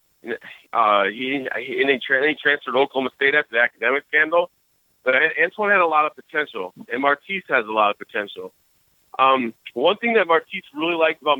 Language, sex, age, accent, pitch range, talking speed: English, male, 40-59, American, 125-150 Hz, 185 wpm